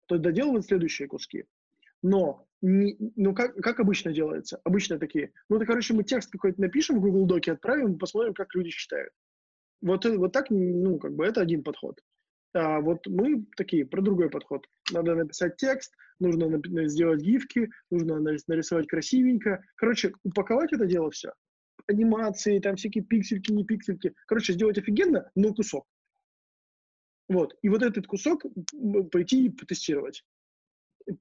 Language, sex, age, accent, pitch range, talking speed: Russian, male, 20-39, native, 175-220 Hz, 150 wpm